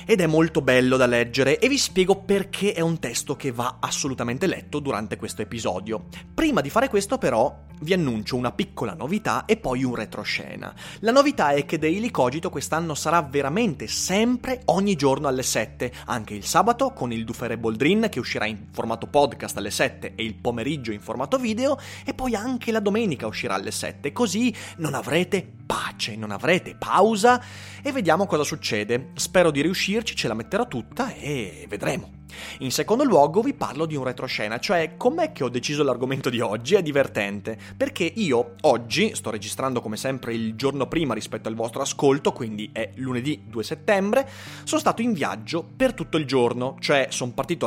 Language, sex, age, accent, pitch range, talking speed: Italian, male, 30-49, native, 120-185 Hz, 180 wpm